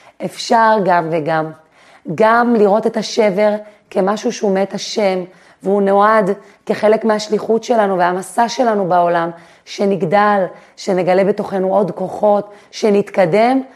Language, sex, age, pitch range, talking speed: Hebrew, female, 30-49, 185-225 Hz, 110 wpm